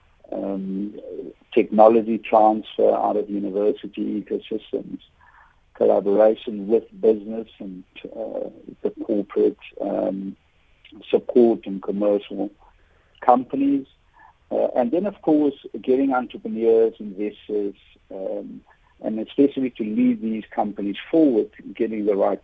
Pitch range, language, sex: 100-120 Hz, English, male